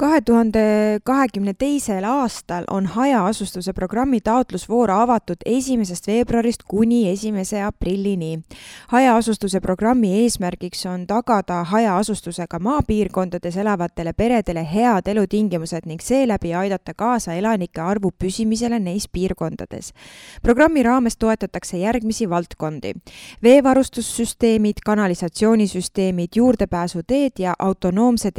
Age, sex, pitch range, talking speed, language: 20-39, female, 175-230 Hz, 95 wpm, English